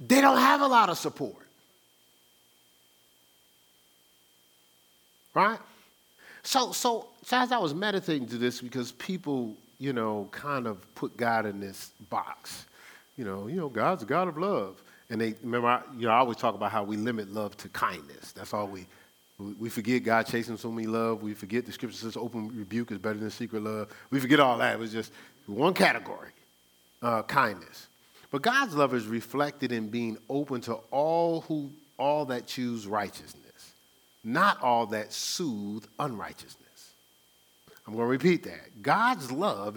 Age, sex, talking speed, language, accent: 40-59, male, 170 wpm, English, American